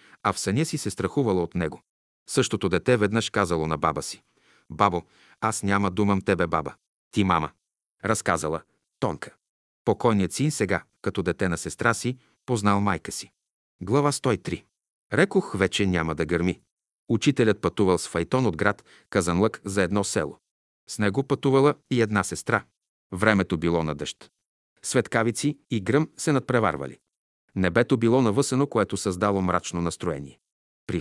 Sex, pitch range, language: male, 90-130 Hz, Bulgarian